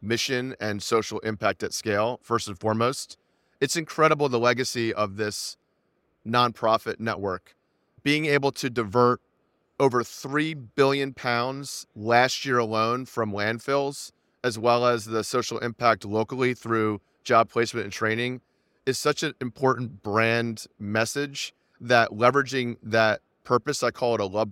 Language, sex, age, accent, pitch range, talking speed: English, male, 30-49, American, 110-130 Hz, 140 wpm